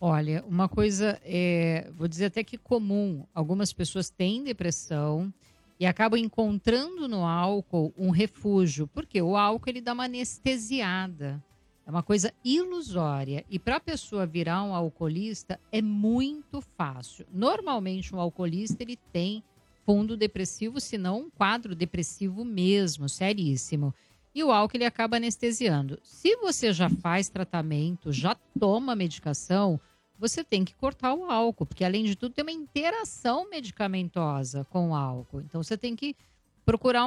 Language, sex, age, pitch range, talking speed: Portuguese, female, 50-69, 170-235 Hz, 145 wpm